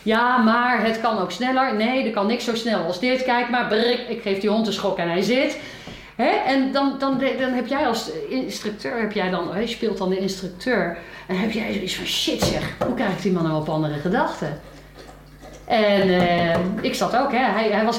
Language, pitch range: Dutch, 195-275 Hz